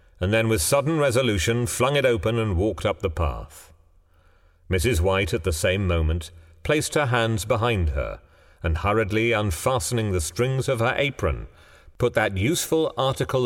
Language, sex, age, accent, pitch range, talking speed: English, male, 40-59, British, 80-115 Hz, 160 wpm